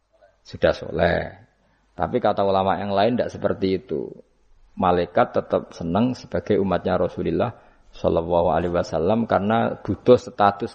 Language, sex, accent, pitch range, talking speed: Indonesian, male, native, 90-115 Hz, 125 wpm